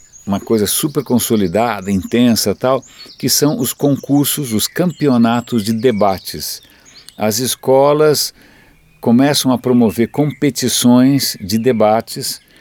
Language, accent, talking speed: Portuguese, Brazilian, 105 wpm